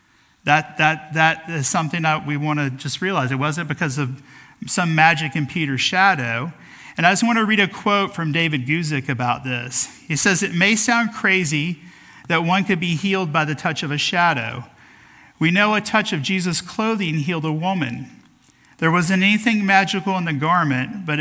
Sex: male